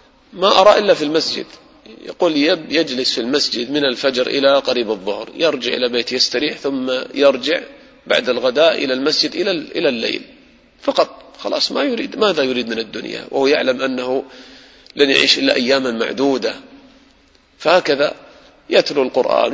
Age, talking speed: 40-59, 145 wpm